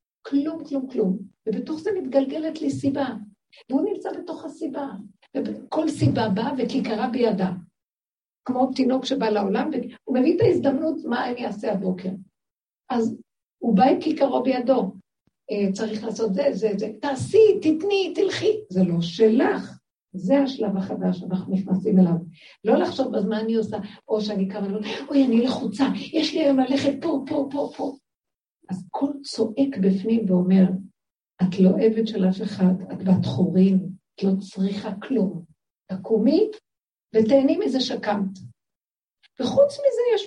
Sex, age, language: female, 60-79, Hebrew